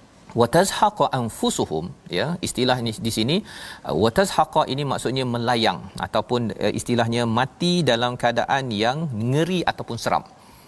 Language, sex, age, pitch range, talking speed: Malayalam, male, 40-59, 105-140 Hz, 120 wpm